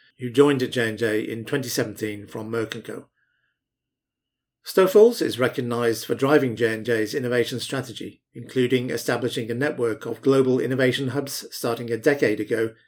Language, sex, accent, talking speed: English, male, British, 135 wpm